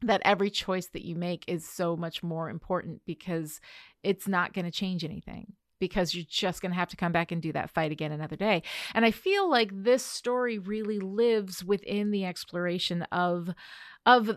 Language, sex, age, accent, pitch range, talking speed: English, female, 30-49, American, 165-200 Hz, 195 wpm